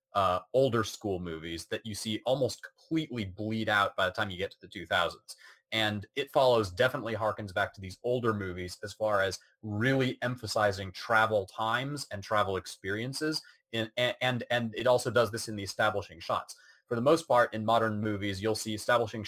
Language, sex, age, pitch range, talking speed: English, male, 30-49, 100-120 Hz, 185 wpm